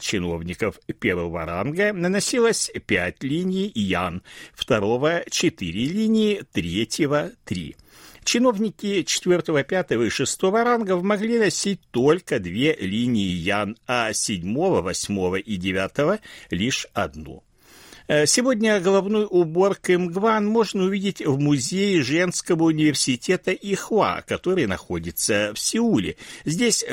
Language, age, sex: Russian, 60-79, male